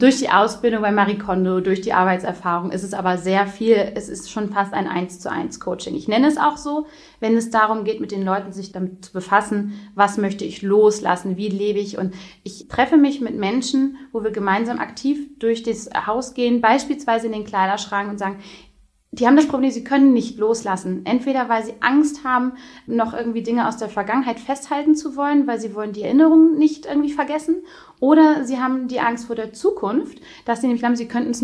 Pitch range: 210-255 Hz